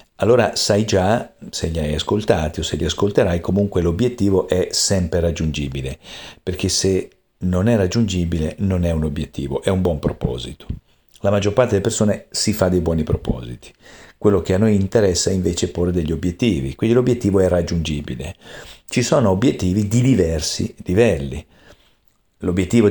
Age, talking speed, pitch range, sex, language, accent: 50-69, 155 wpm, 85-105 Hz, male, Italian, native